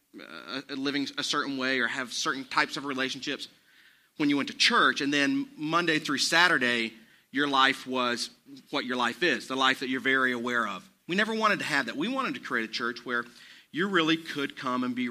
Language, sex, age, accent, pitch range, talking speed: English, male, 40-59, American, 125-160 Hz, 215 wpm